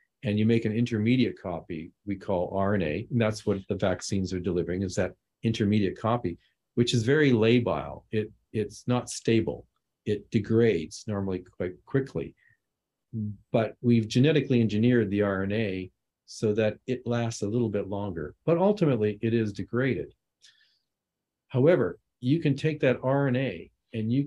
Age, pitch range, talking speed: 50-69, 95-120 Hz, 145 wpm